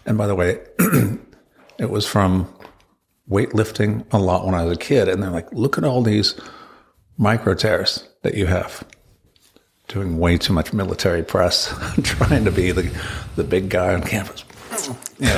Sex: male